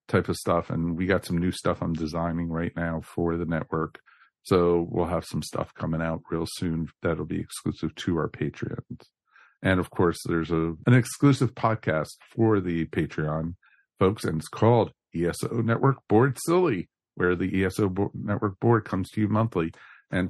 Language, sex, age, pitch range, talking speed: English, male, 50-69, 85-110 Hz, 180 wpm